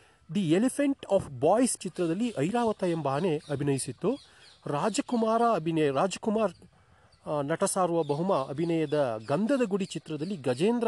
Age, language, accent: 30-49, Kannada, native